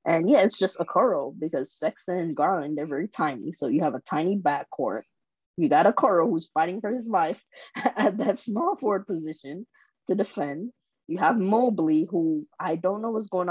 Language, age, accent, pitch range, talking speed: English, 20-39, American, 155-195 Hz, 195 wpm